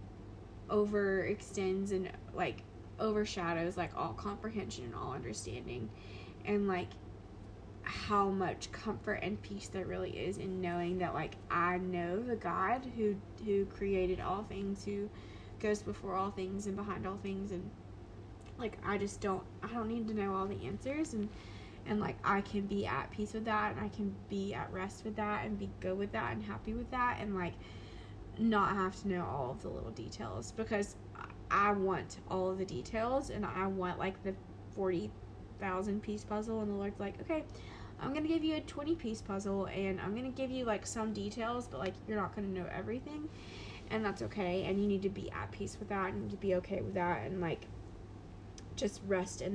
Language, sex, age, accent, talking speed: English, female, 20-39, American, 200 wpm